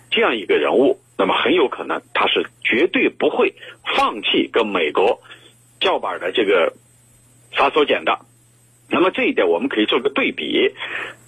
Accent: native